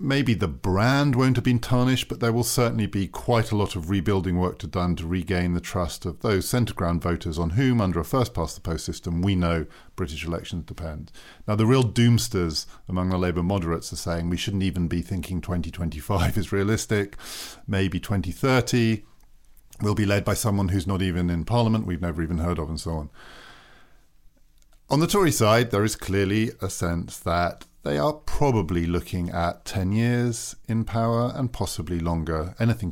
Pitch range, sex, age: 90-115 Hz, male, 50-69